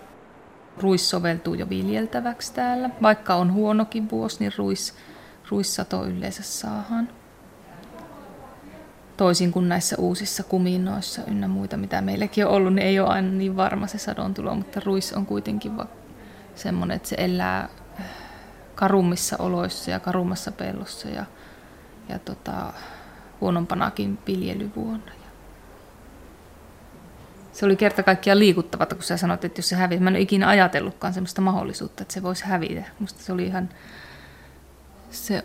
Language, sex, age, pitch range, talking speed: Finnish, female, 20-39, 175-205 Hz, 135 wpm